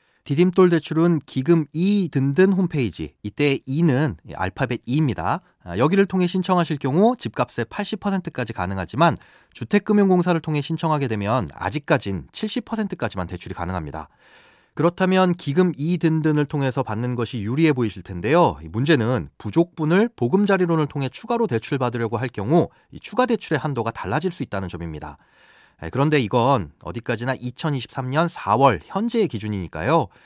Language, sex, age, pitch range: Korean, male, 30-49, 115-175 Hz